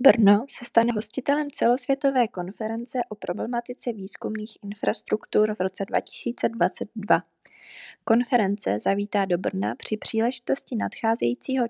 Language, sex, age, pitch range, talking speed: Czech, female, 20-39, 195-235 Hz, 105 wpm